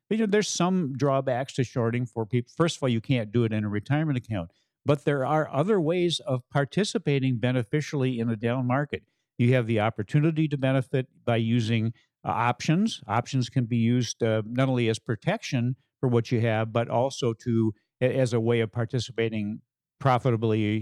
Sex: male